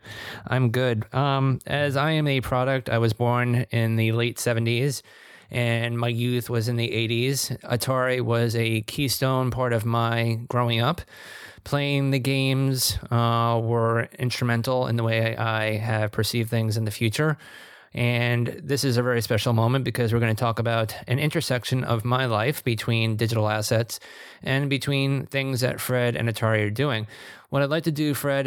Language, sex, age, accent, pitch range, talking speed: English, male, 20-39, American, 115-135 Hz, 175 wpm